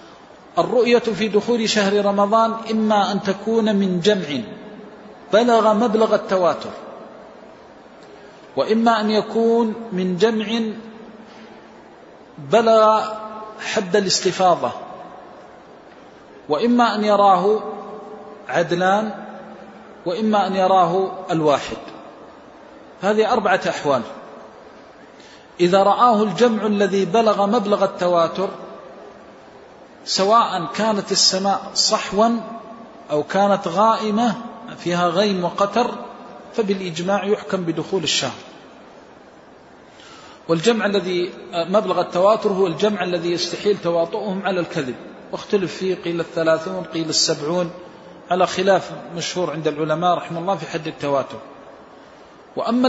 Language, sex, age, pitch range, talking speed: Arabic, male, 40-59, 180-220 Hz, 90 wpm